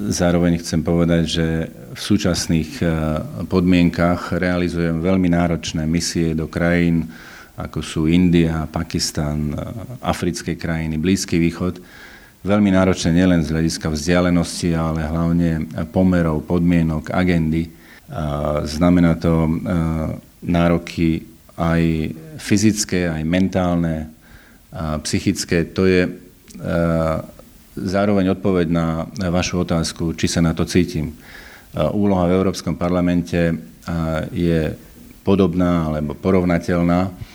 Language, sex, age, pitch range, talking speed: Slovak, male, 40-59, 80-90 Hz, 95 wpm